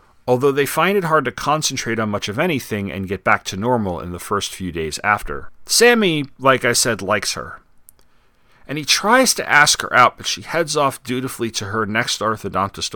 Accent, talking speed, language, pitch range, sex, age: American, 205 wpm, English, 100-135 Hz, male, 40-59